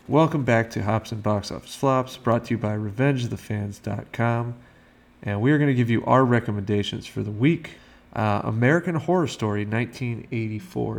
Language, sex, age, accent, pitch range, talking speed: English, male, 30-49, American, 105-125 Hz, 165 wpm